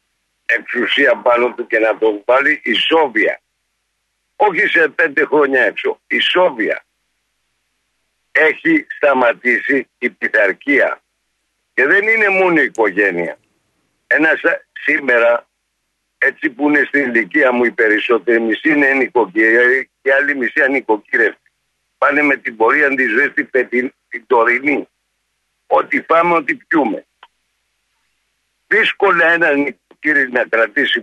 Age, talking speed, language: 60-79, 115 wpm, Greek